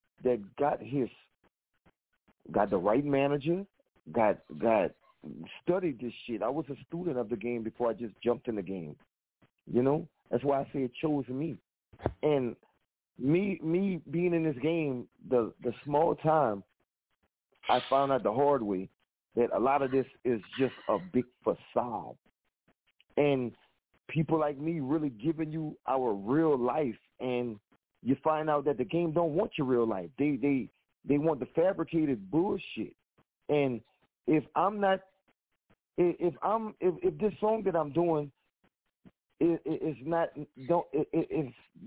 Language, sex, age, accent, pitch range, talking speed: English, male, 40-59, American, 125-165 Hz, 150 wpm